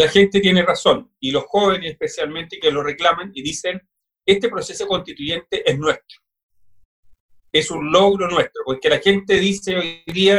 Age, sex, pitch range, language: 40-59, male, 175-245 Hz, Spanish